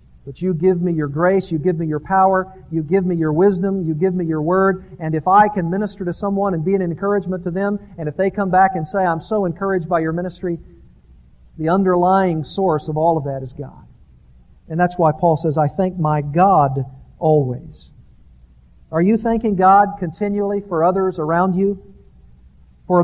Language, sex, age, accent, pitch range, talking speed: English, male, 50-69, American, 150-195 Hz, 200 wpm